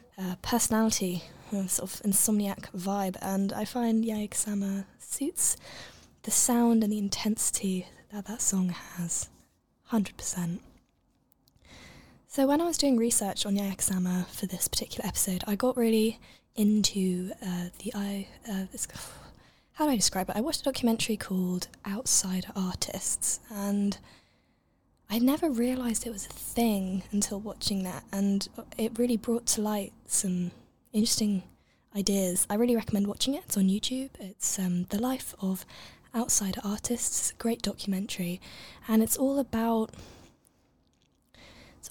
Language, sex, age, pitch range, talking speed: English, female, 10-29, 190-225 Hz, 135 wpm